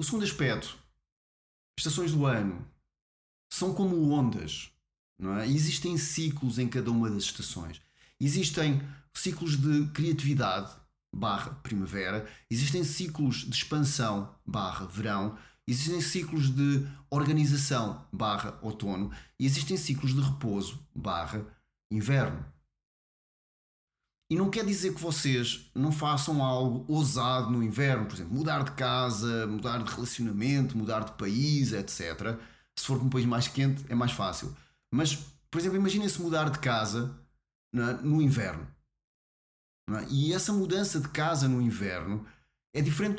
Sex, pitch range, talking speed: male, 110-155 Hz, 140 wpm